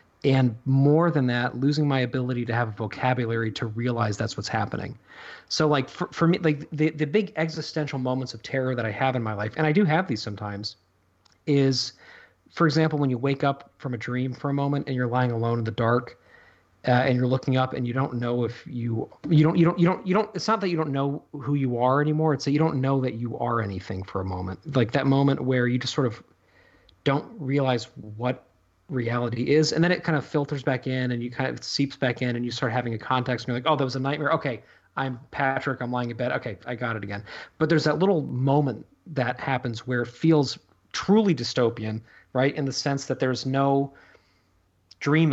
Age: 40-59